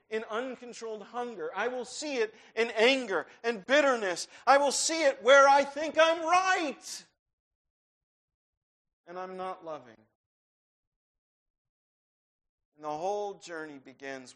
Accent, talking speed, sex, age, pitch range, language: American, 120 wpm, male, 50-69, 155-245 Hz, English